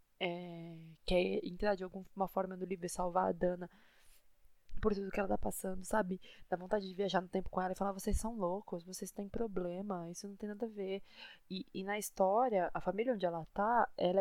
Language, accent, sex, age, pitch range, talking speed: Portuguese, Brazilian, female, 20-39, 165-200 Hz, 215 wpm